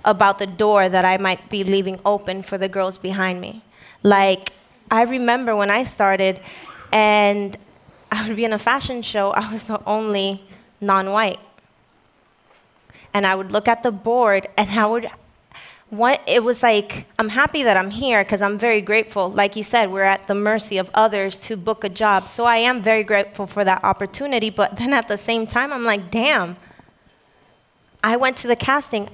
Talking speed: 185 wpm